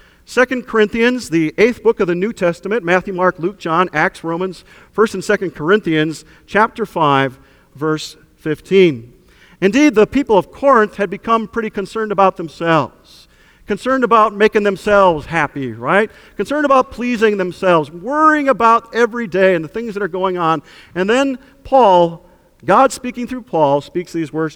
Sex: male